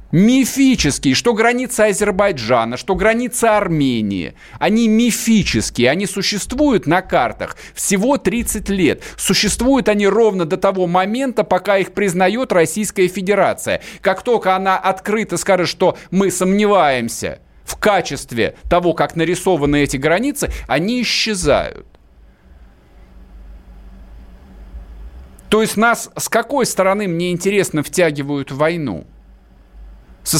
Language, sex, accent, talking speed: Russian, male, native, 110 wpm